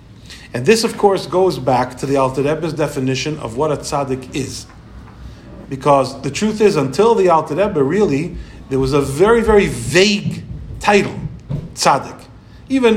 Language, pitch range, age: English, 140-200 Hz, 50-69